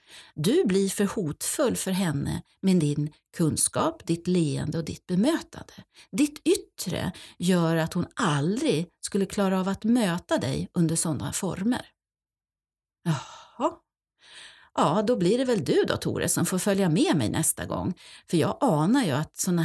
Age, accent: 40-59, native